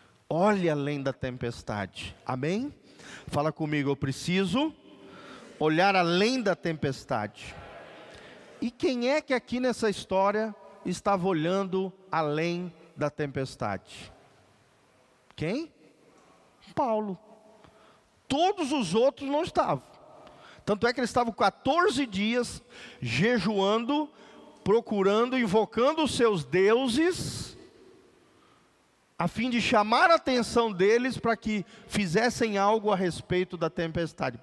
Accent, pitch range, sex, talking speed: Brazilian, 150-225 Hz, male, 105 wpm